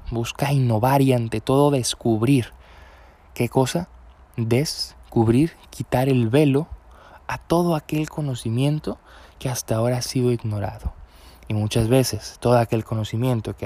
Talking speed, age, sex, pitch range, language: 125 wpm, 20-39, male, 110-140 Hz, Spanish